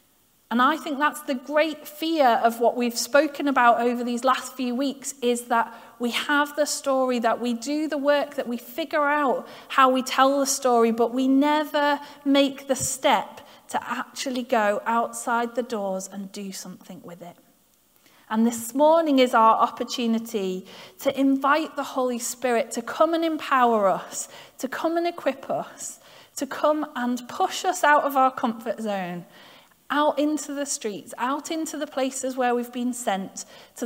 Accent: British